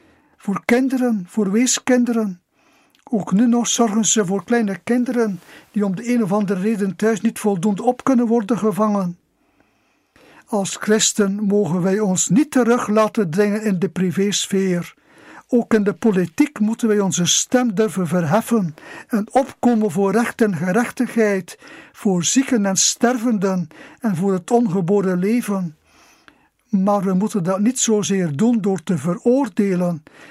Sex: male